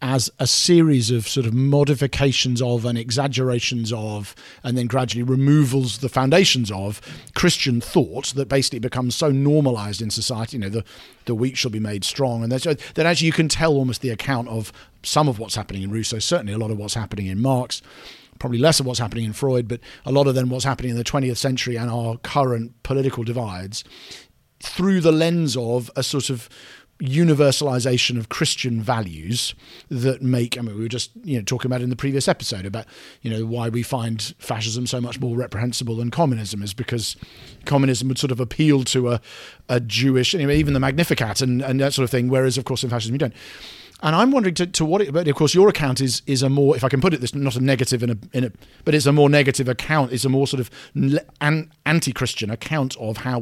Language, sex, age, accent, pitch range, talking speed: English, male, 50-69, British, 120-145 Hz, 220 wpm